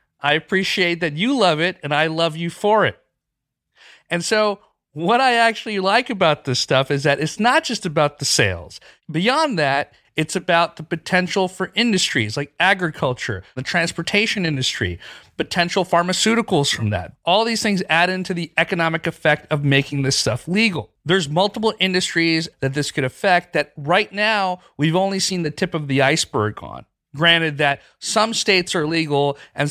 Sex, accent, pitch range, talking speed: male, American, 145-190 Hz, 170 wpm